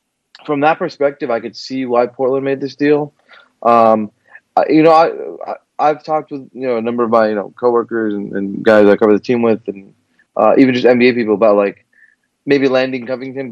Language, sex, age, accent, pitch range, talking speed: English, male, 20-39, American, 105-135 Hz, 210 wpm